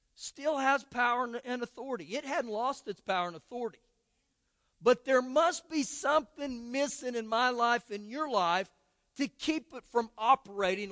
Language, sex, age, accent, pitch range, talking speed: English, male, 50-69, American, 205-280 Hz, 160 wpm